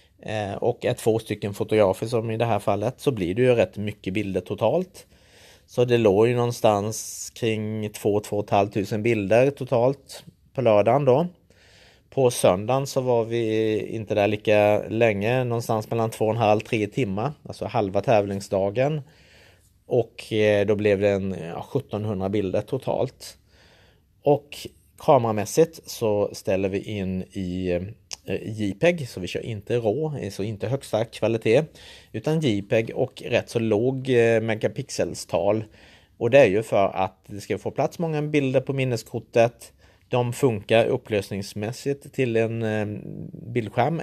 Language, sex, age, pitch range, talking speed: Swedish, male, 30-49, 100-125 Hz, 145 wpm